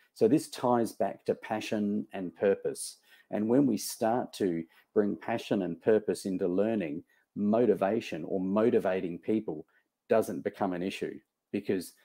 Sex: male